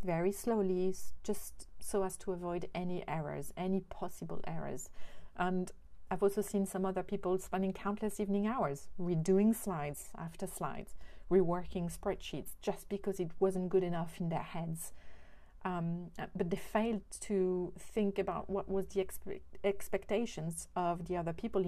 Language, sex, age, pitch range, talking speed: English, female, 30-49, 165-195 Hz, 145 wpm